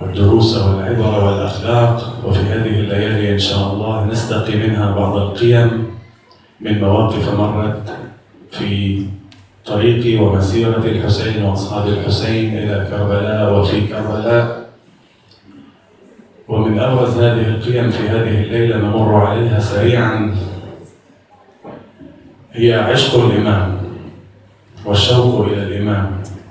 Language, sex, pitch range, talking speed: Arabic, male, 100-115 Hz, 95 wpm